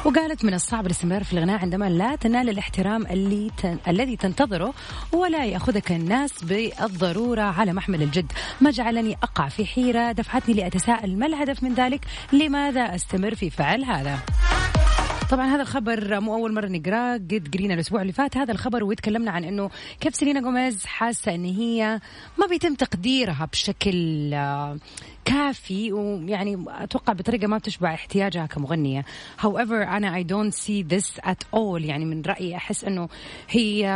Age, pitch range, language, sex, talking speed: 30-49, 180-235 Hz, Arabic, female, 150 wpm